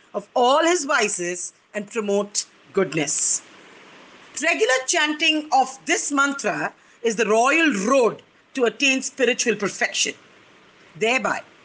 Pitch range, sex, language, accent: 210-300 Hz, female, English, Indian